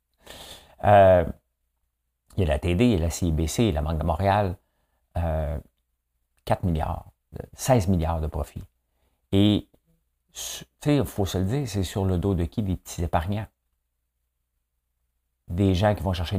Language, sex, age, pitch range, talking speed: French, male, 50-69, 70-95 Hz, 155 wpm